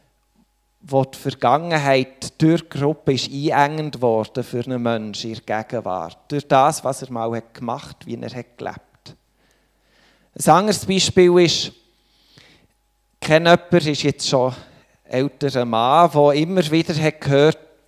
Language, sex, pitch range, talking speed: German, male, 125-160 Hz, 135 wpm